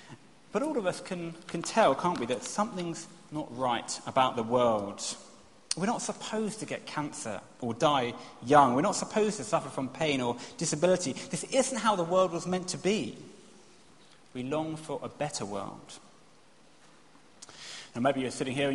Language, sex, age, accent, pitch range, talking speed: English, male, 30-49, British, 125-190 Hz, 175 wpm